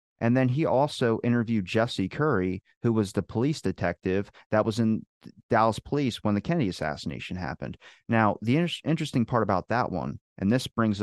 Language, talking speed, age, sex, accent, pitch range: English, 180 wpm, 30-49, male, American, 90-110 Hz